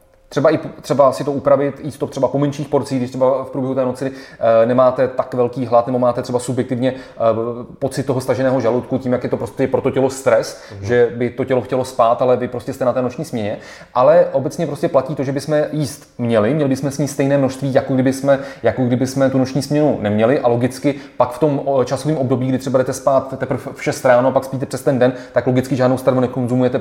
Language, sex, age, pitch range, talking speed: Czech, male, 30-49, 120-135 Hz, 225 wpm